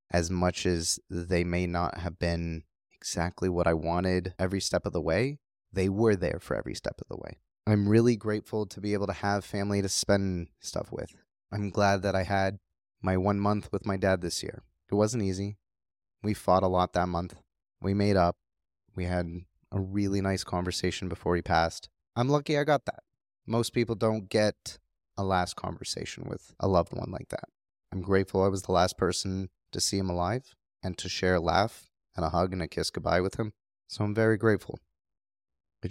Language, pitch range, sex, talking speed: English, 85-100 Hz, male, 200 wpm